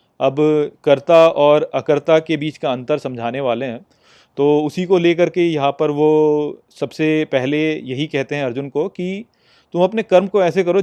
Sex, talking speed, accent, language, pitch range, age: male, 185 wpm, native, Hindi, 135-180 Hz, 30-49